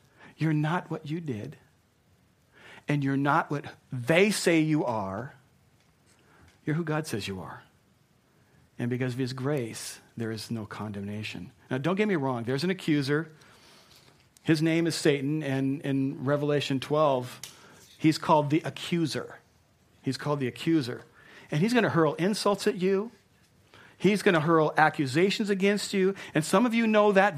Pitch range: 135-195 Hz